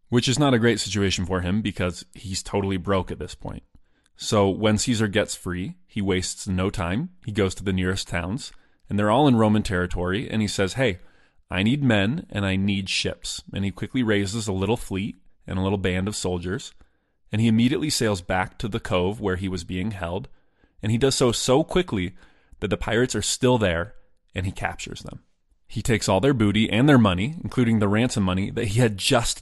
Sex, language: male, English